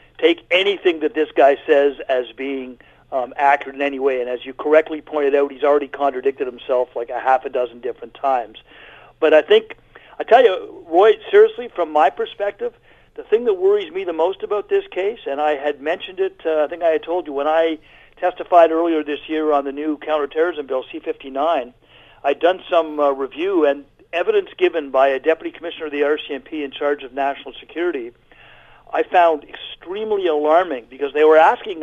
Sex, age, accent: male, 50-69, American